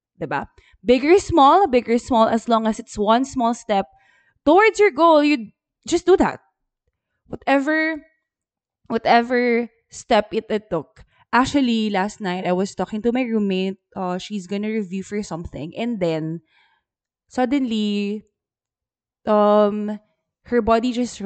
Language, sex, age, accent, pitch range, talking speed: English, female, 20-39, Filipino, 195-275 Hz, 140 wpm